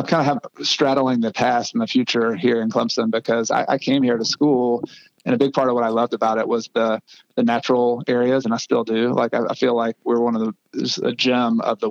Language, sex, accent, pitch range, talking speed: English, male, American, 115-125 Hz, 255 wpm